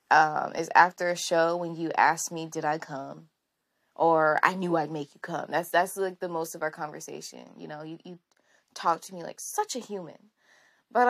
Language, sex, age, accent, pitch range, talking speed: English, female, 20-39, American, 170-225 Hz, 210 wpm